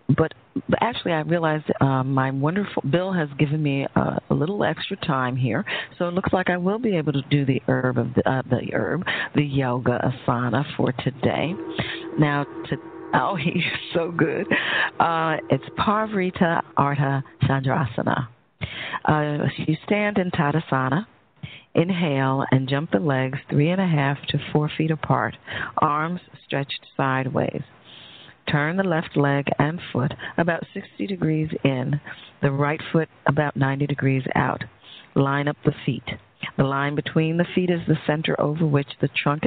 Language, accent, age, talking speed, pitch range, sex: English, American, 40-59, 160 wpm, 135-160 Hz, female